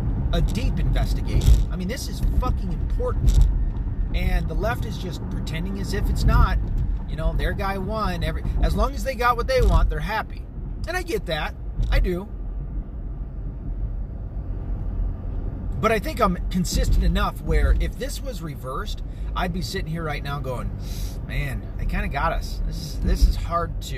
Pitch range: 95-155 Hz